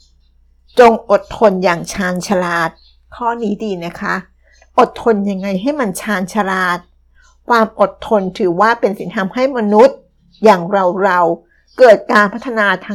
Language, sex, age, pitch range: Thai, female, 60-79, 180-220 Hz